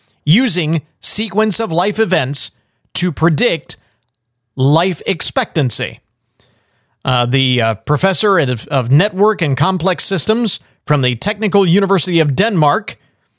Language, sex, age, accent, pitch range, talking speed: English, male, 40-59, American, 130-195 Hz, 110 wpm